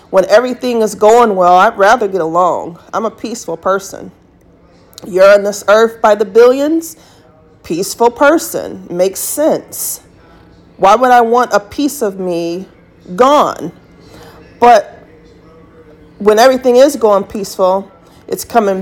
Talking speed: 130 wpm